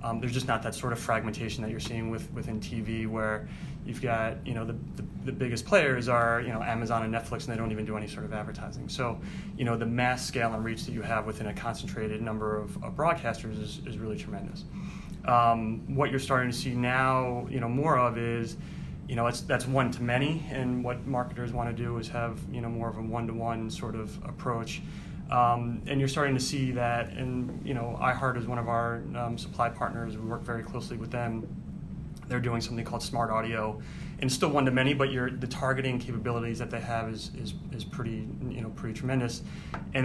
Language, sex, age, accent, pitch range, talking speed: English, male, 30-49, American, 115-135 Hz, 230 wpm